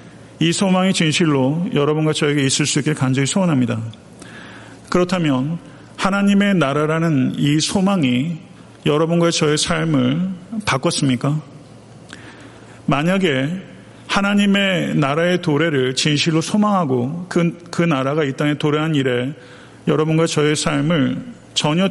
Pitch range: 135-170 Hz